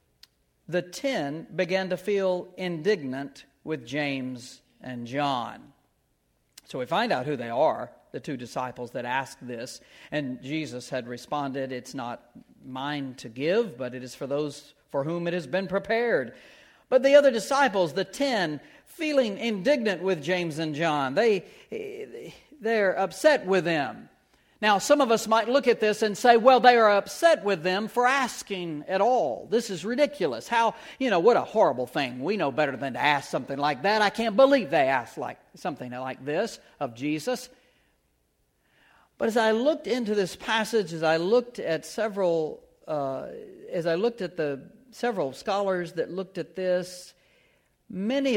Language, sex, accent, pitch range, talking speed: English, male, American, 150-235 Hz, 165 wpm